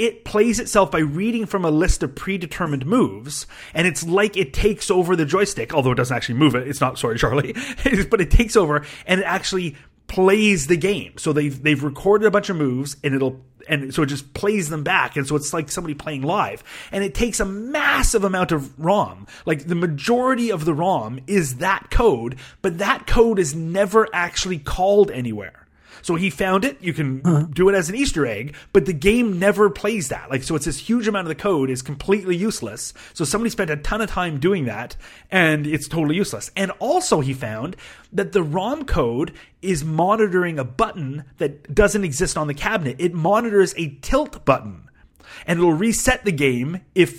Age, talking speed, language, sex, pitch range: 30-49, 205 wpm, English, male, 150-205 Hz